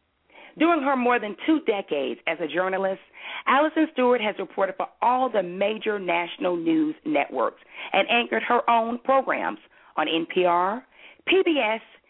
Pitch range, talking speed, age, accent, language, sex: 190-275 Hz, 140 wpm, 40-59, American, English, female